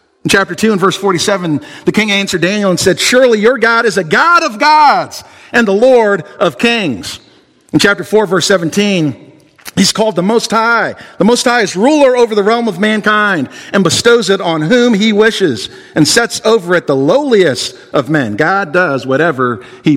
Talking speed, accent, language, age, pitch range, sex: 190 wpm, American, English, 50-69, 170-225 Hz, male